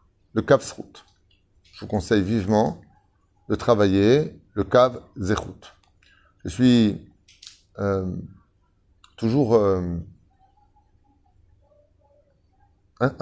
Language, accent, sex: French, French, male